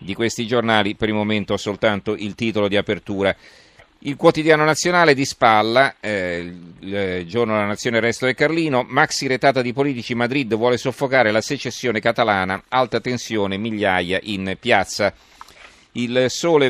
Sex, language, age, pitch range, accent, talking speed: male, Italian, 40-59, 100-125 Hz, native, 155 wpm